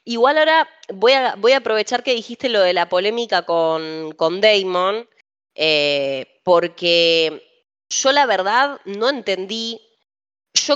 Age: 20-39